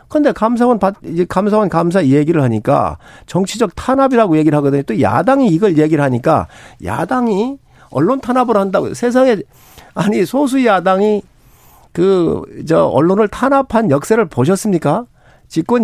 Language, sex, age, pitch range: Korean, male, 50-69, 150-225 Hz